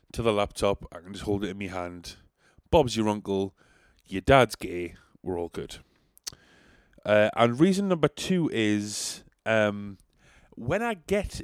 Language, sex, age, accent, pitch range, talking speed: English, male, 20-39, British, 95-125 Hz, 155 wpm